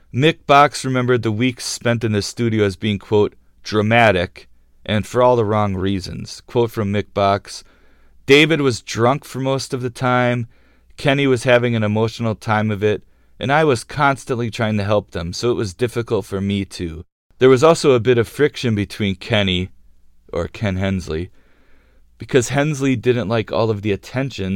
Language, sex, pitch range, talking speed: English, male, 95-120 Hz, 180 wpm